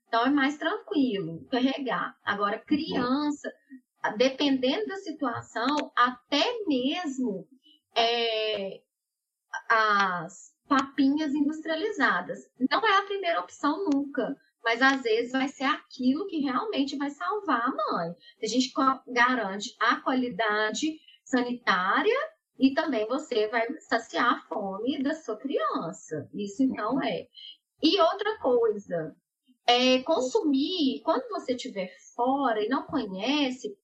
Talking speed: 115 wpm